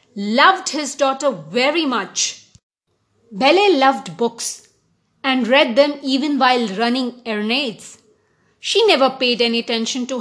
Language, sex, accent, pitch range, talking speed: English, female, Indian, 235-300 Hz, 125 wpm